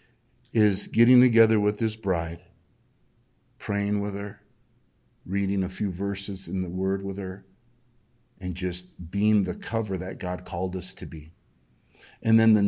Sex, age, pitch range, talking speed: male, 50-69, 100-140 Hz, 150 wpm